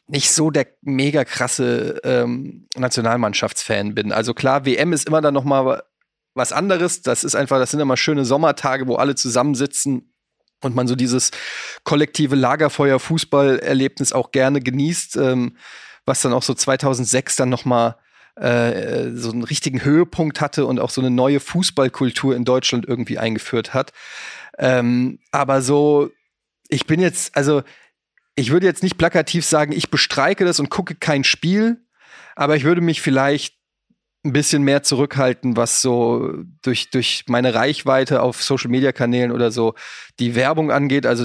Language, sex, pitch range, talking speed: German, male, 125-150 Hz, 155 wpm